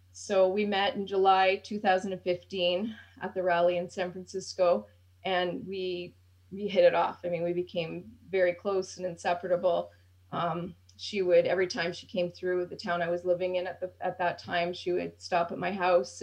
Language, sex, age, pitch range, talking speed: English, female, 30-49, 170-190 Hz, 190 wpm